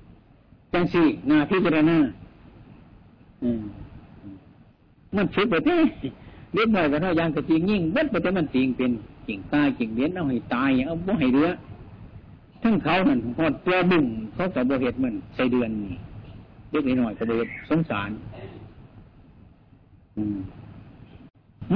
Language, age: Thai, 60-79